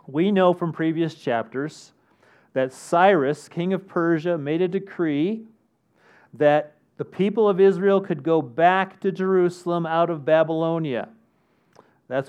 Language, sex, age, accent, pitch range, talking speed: English, male, 40-59, American, 125-175 Hz, 130 wpm